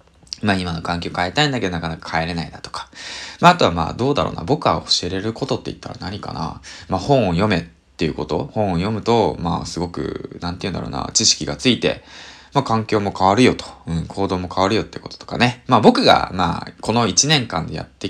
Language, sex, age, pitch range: Japanese, male, 20-39, 85-125 Hz